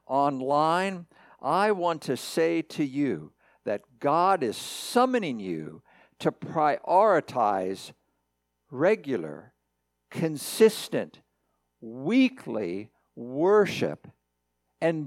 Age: 60-79